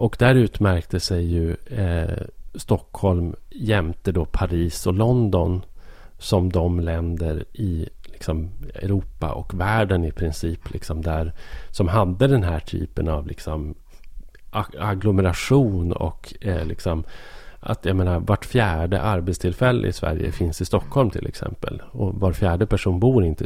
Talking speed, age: 140 wpm, 40-59